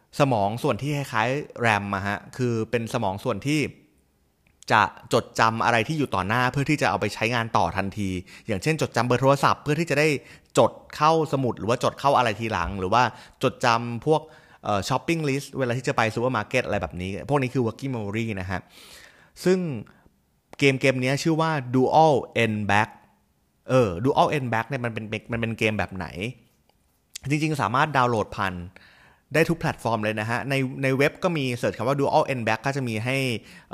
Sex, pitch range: male, 105-135 Hz